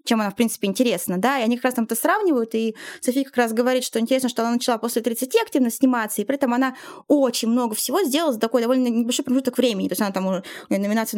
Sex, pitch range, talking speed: female, 215-270 Hz, 245 wpm